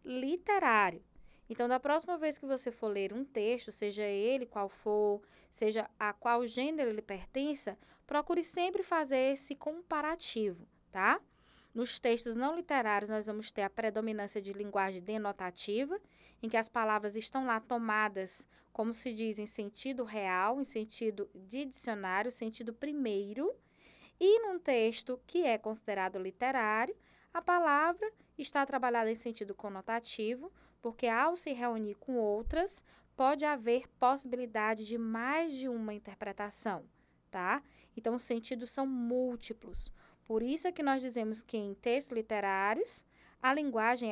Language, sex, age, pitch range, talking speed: Portuguese, female, 20-39, 215-275 Hz, 140 wpm